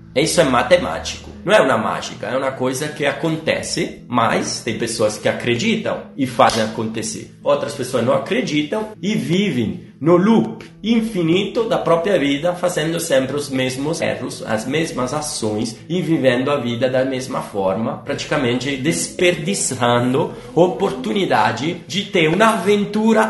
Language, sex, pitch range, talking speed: Italian, male, 135-185 Hz, 140 wpm